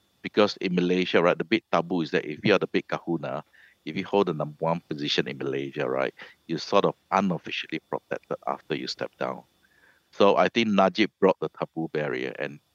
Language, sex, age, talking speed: English, male, 60-79, 200 wpm